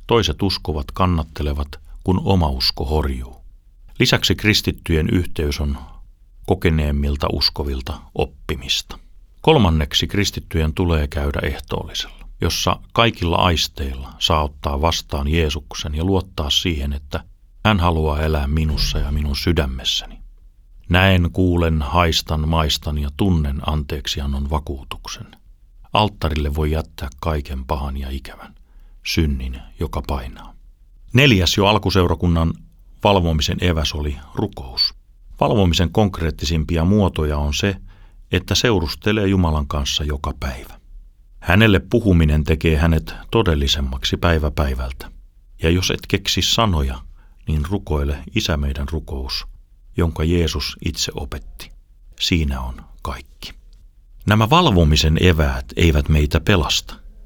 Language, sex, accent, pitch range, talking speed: Finnish, male, native, 75-95 Hz, 105 wpm